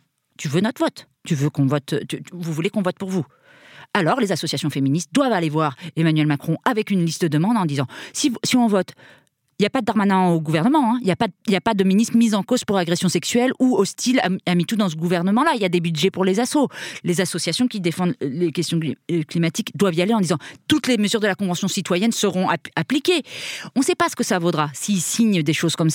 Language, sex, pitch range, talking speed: French, female, 165-240 Hz, 250 wpm